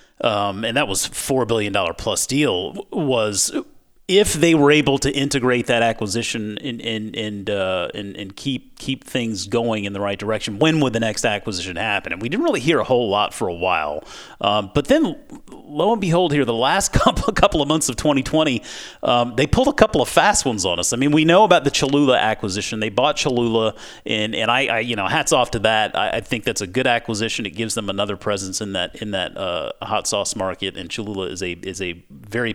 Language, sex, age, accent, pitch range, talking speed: English, male, 30-49, American, 105-140 Hz, 220 wpm